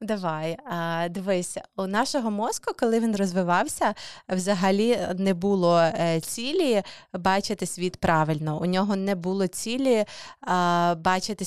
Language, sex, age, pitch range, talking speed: Ukrainian, female, 20-39, 175-210 Hz, 110 wpm